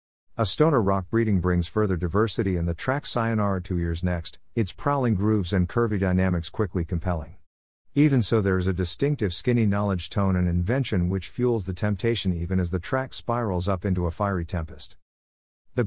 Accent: American